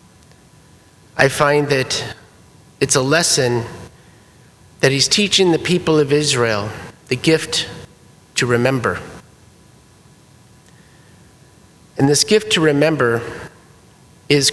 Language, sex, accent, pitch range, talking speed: English, male, American, 115-145 Hz, 95 wpm